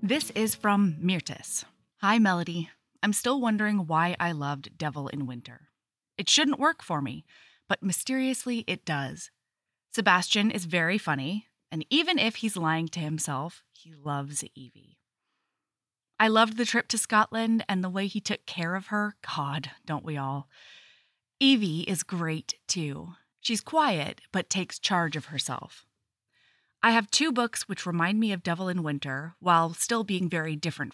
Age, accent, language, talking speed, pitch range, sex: 20-39, American, English, 160 wpm, 155-220 Hz, female